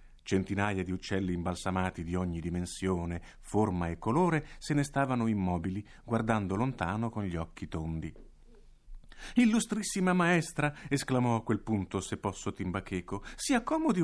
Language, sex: Italian, male